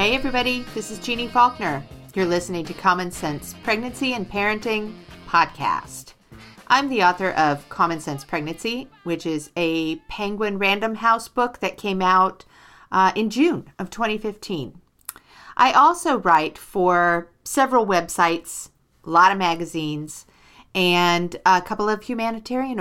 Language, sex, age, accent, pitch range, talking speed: English, female, 40-59, American, 160-225 Hz, 135 wpm